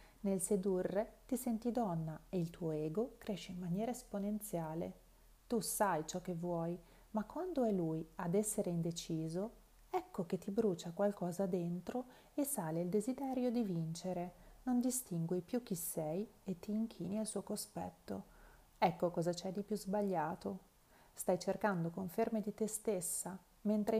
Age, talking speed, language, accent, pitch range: 30-49, 155 wpm, Italian, native, 175-225 Hz